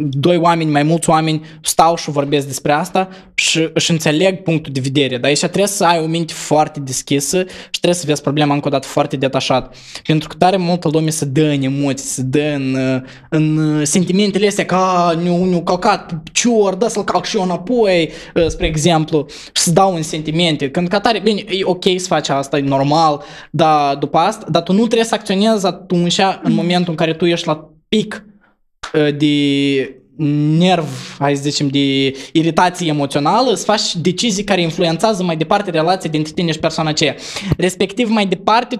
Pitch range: 150-195 Hz